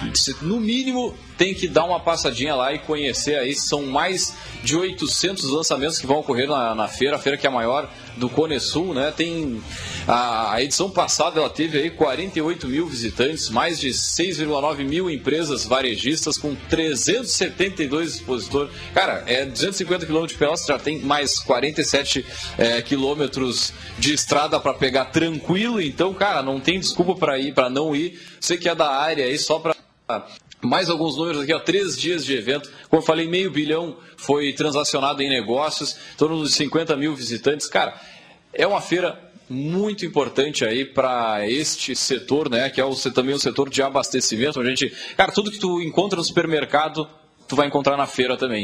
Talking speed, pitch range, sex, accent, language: 180 wpm, 135-165 Hz, male, Brazilian, Portuguese